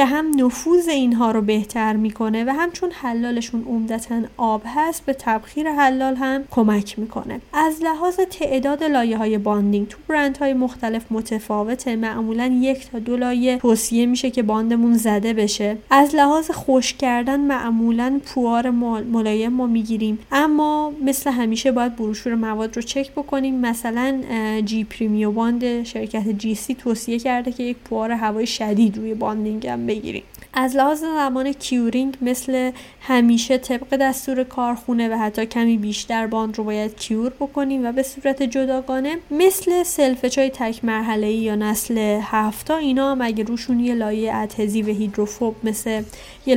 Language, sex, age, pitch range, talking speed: Persian, female, 30-49, 220-265 Hz, 150 wpm